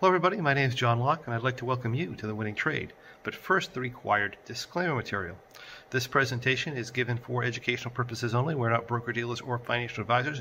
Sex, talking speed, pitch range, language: male, 215 wpm, 115-135 Hz, English